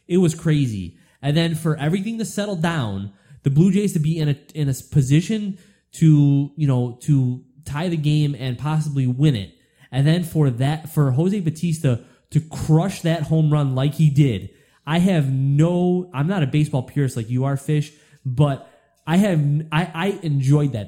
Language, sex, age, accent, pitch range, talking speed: English, male, 20-39, American, 120-155 Hz, 185 wpm